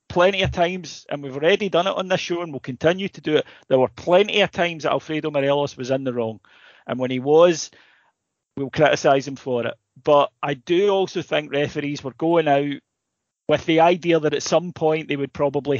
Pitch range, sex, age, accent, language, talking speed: 130-160 Hz, male, 30-49, British, English, 215 wpm